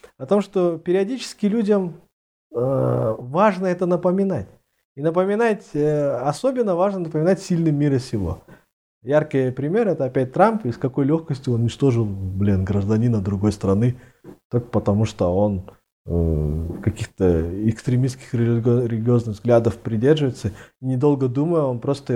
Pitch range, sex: 110-165 Hz, male